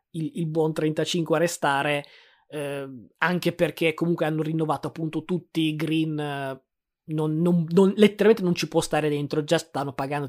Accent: native